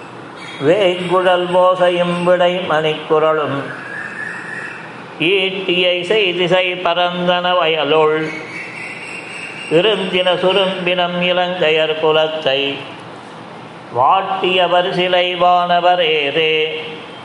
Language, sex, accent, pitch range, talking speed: Tamil, male, native, 155-180 Hz, 55 wpm